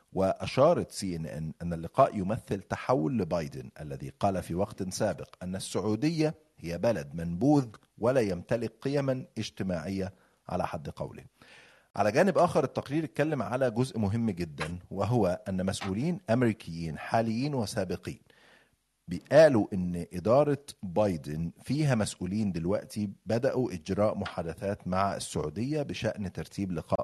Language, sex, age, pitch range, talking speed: Arabic, male, 40-59, 90-115 Hz, 125 wpm